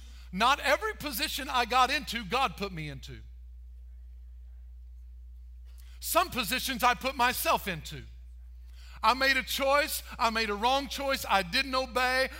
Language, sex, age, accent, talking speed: English, male, 50-69, American, 135 wpm